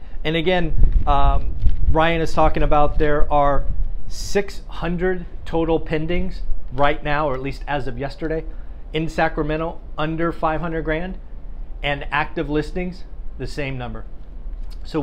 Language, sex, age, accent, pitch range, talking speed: English, male, 40-59, American, 125-160 Hz, 130 wpm